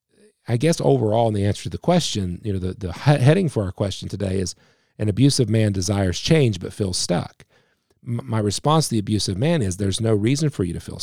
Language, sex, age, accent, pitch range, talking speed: English, male, 40-59, American, 100-125 Hz, 230 wpm